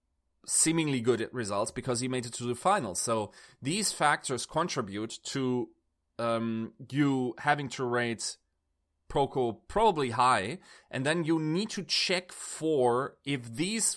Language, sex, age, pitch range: English, male, 30-49, 110-140 Hz